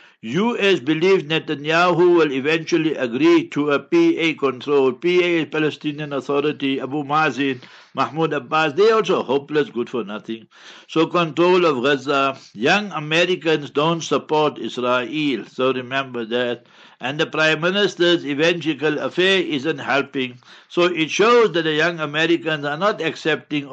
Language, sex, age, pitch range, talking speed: English, male, 60-79, 140-165 Hz, 140 wpm